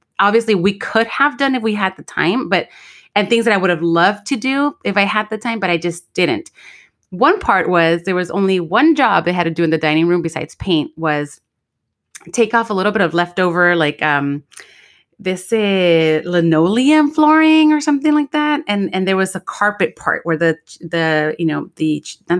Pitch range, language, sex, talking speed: 165-220 Hz, English, female, 215 wpm